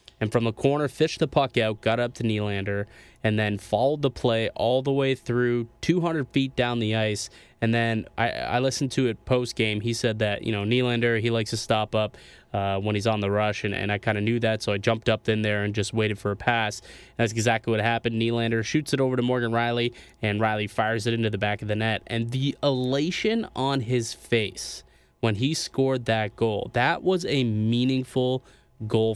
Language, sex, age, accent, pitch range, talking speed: English, male, 20-39, American, 110-130 Hz, 220 wpm